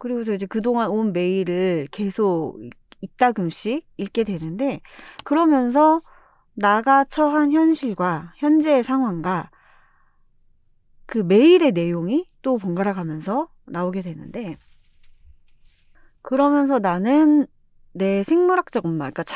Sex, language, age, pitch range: female, Korean, 30-49, 190-275 Hz